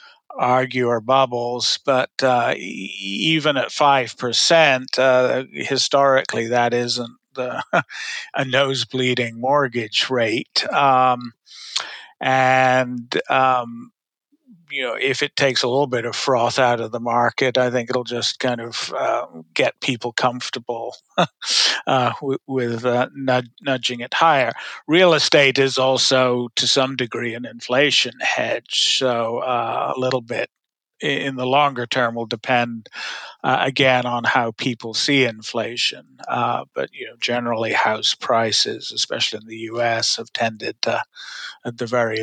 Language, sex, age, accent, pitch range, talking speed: English, male, 50-69, American, 120-130 Hz, 135 wpm